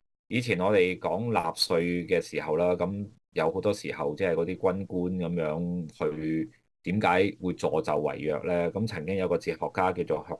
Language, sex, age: Chinese, male, 30-49